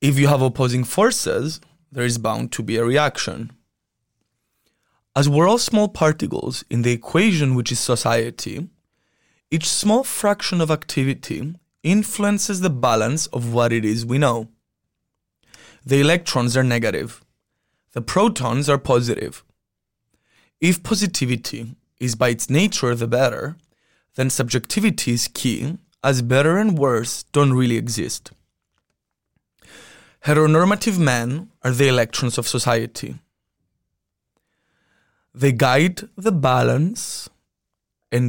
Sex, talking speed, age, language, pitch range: male, 120 wpm, 20-39, English, 120-160 Hz